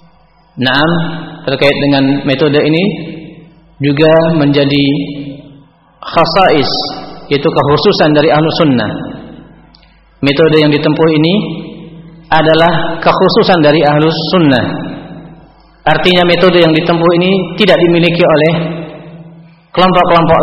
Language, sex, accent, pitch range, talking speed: Indonesian, male, native, 150-175 Hz, 90 wpm